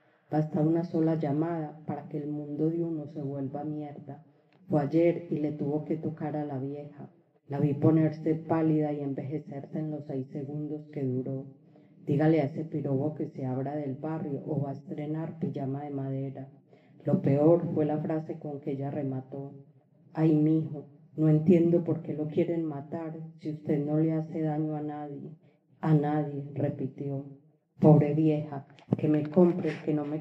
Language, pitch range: Spanish, 145-160 Hz